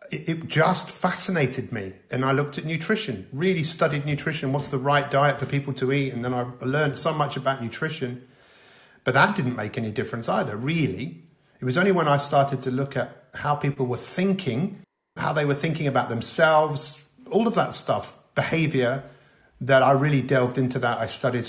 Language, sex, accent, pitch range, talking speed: English, male, British, 130-160 Hz, 190 wpm